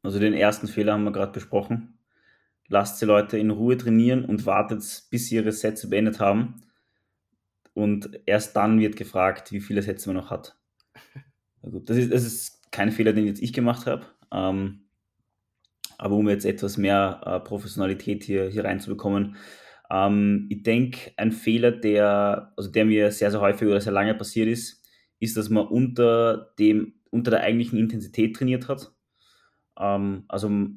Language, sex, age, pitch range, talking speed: German, male, 20-39, 100-115 Hz, 160 wpm